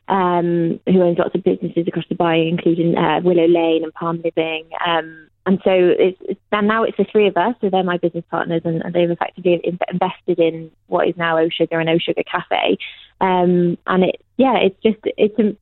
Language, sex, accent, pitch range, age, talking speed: English, female, British, 170-205 Hz, 20-39, 200 wpm